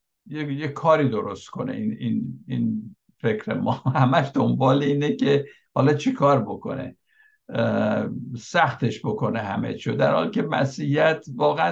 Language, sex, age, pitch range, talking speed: Persian, male, 60-79, 115-145 Hz, 140 wpm